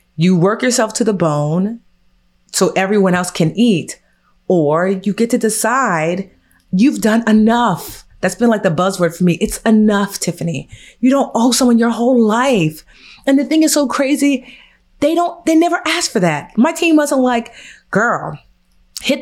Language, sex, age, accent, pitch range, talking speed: English, female, 30-49, American, 170-235 Hz, 170 wpm